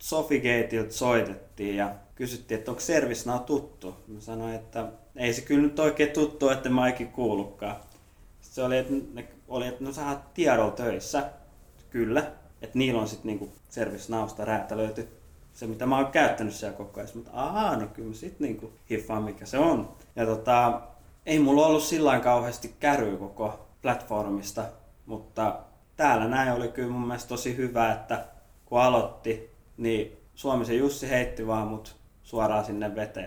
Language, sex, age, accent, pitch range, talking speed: Finnish, male, 20-39, native, 105-125 Hz, 155 wpm